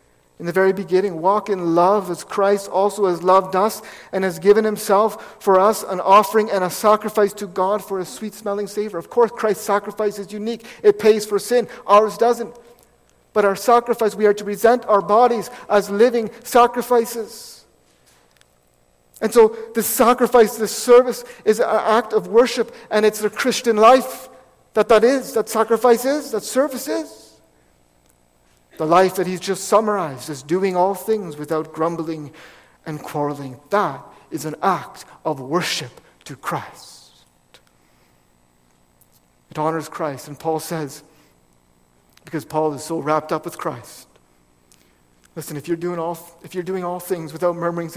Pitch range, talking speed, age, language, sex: 145-215 Hz, 160 wpm, 50-69, English, male